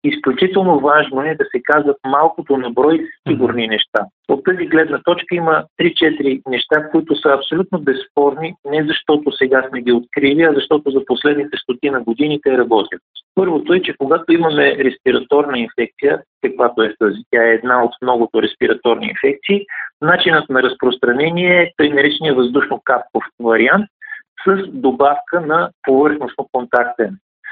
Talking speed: 135 wpm